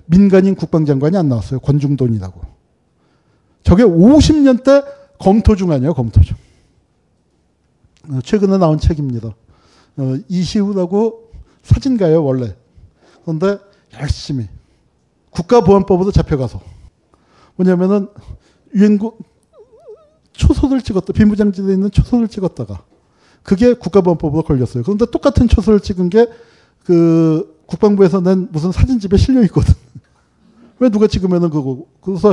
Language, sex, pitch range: Korean, male, 130-195 Hz